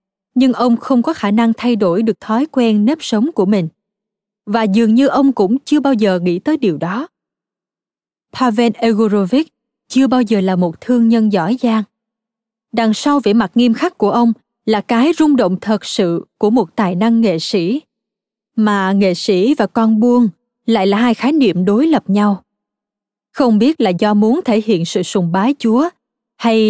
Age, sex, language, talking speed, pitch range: 20-39, female, Vietnamese, 190 wpm, 200-250 Hz